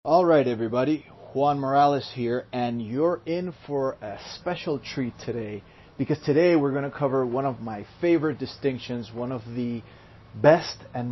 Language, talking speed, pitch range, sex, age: English, 160 wpm, 120-150 Hz, male, 30-49